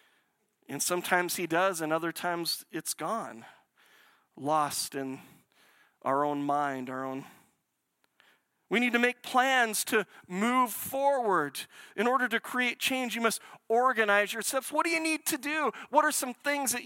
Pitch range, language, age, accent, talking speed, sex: 180-240 Hz, English, 40-59, American, 155 wpm, male